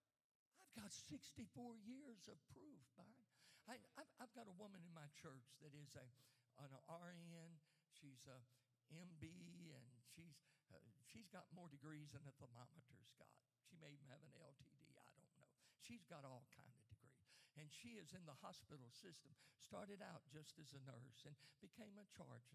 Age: 60-79